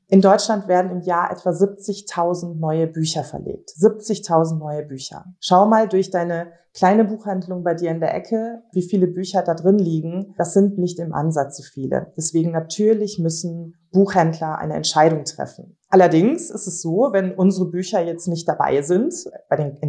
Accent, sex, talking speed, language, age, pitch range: German, female, 170 wpm, German, 30-49, 165-200 Hz